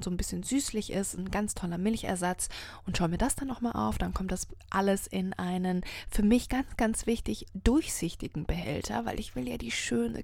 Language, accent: German, German